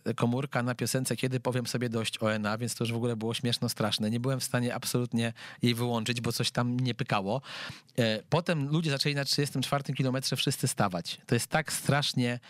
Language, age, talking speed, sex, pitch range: Polish, 40-59, 190 wpm, male, 120-135 Hz